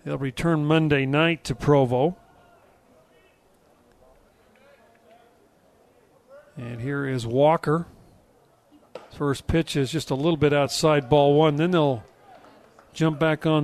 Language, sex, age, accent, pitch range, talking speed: English, male, 40-59, American, 140-165 Hz, 110 wpm